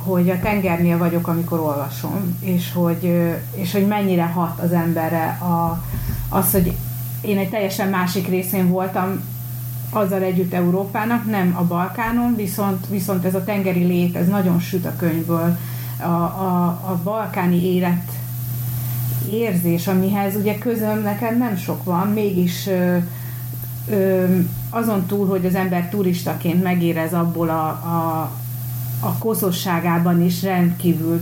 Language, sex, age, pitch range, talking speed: Hungarian, female, 30-49, 155-185 Hz, 135 wpm